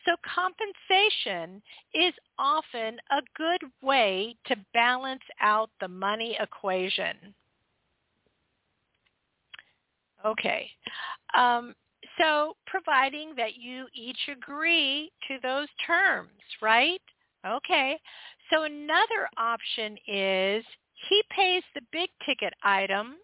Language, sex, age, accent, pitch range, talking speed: English, female, 50-69, American, 215-305 Hz, 95 wpm